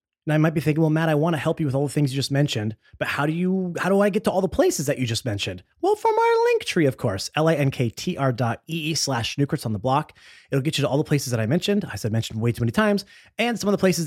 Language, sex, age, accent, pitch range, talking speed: English, male, 30-49, American, 120-160 Hz, 305 wpm